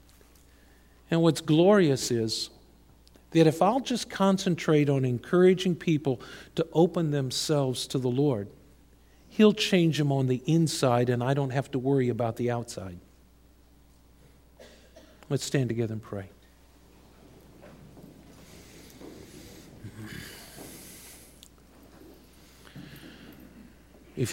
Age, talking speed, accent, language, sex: 50-69, 95 wpm, American, English, male